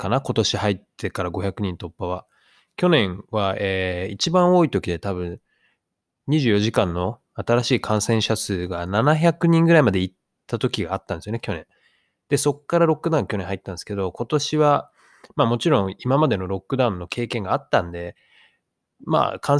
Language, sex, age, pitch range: Japanese, male, 20-39, 95-130 Hz